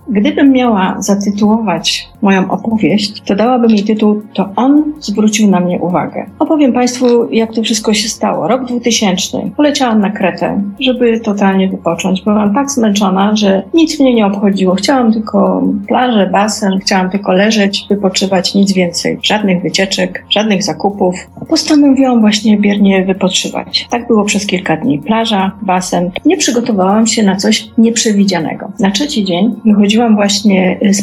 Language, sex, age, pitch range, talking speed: Polish, female, 40-59, 195-235 Hz, 145 wpm